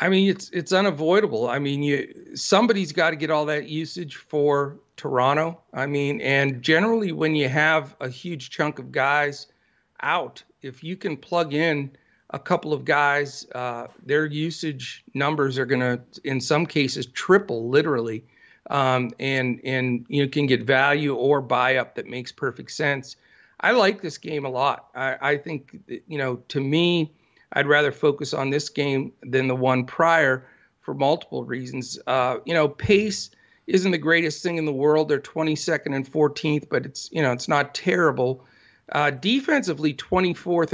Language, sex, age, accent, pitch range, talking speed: English, male, 40-59, American, 130-160 Hz, 170 wpm